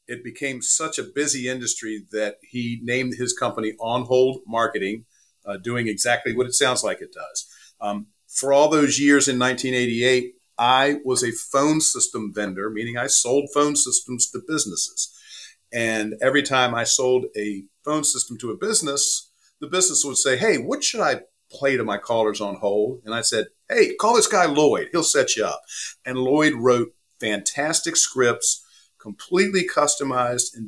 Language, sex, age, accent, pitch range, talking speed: English, male, 50-69, American, 115-145 Hz, 170 wpm